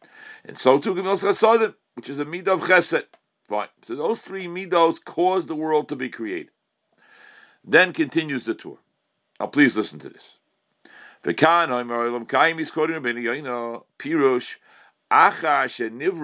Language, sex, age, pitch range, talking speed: English, male, 60-79, 145-220 Hz, 115 wpm